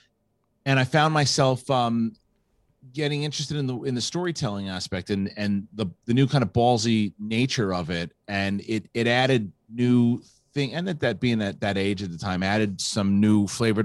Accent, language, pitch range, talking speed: American, English, 90-115 Hz, 190 wpm